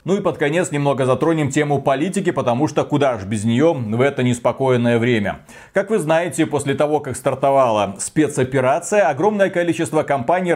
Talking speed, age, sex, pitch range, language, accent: 165 wpm, 30-49, male, 130-160 Hz, Russian, native